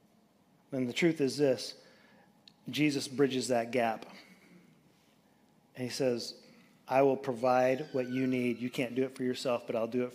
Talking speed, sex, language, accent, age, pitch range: 165 wpm, male, English, American, 30-49, 130-155 Hz